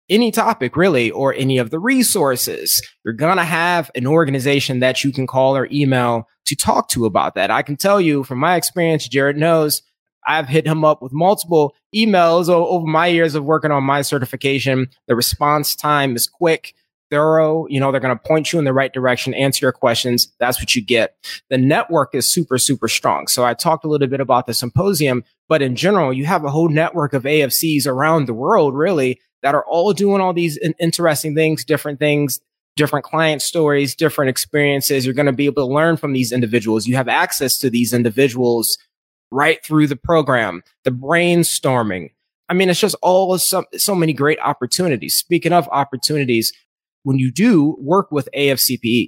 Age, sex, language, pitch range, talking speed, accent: 20-39, male, English, 130-160 Hz, 190 wpm, American